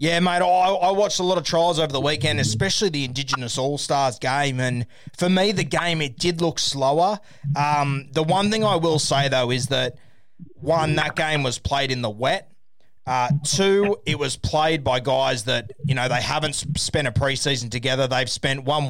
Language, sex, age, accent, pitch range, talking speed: English, male, 20-39, Australian, 125-155 Hz, 195 wpm